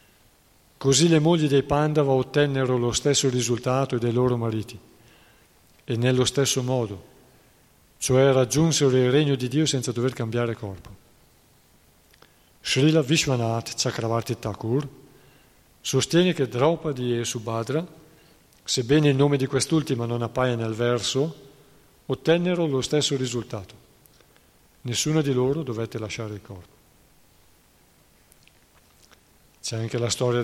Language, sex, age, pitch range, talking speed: Italian, male, 40-59, 115-135 Hz, 115 wpm